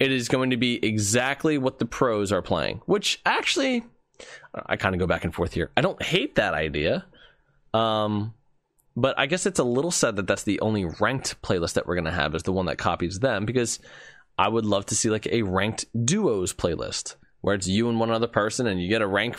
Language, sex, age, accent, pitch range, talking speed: English, male, 20-39, American, 100-140 Hz, 230 wpm